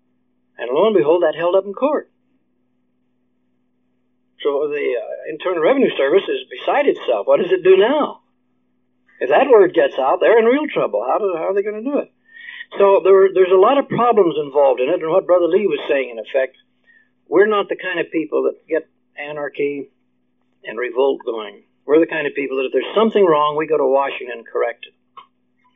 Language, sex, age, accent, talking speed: English, male, 60-79, American, 205 wpm